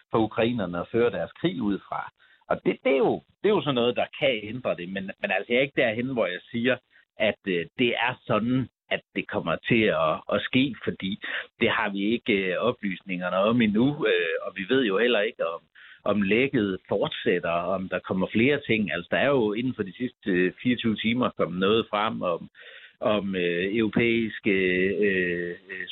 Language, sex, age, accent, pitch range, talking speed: Danish, male, 60-79, native, 90-120 Hz, 205 wpm